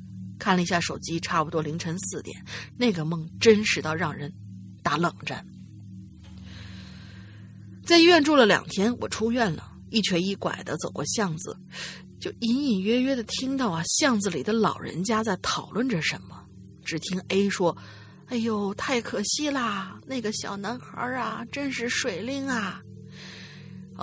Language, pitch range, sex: Chinese, 155-245 Hz, female